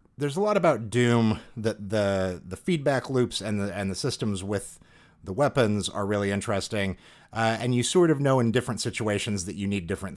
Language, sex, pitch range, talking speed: English, male, 105-140 Hz, 200 wpm